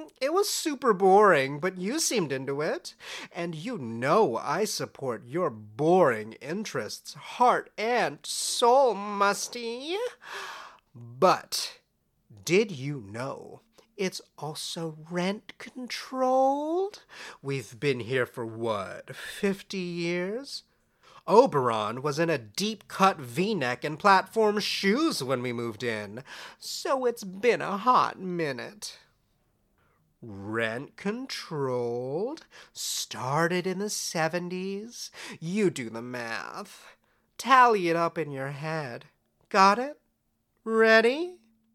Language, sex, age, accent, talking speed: English, male, 40-59, American, 105 wpm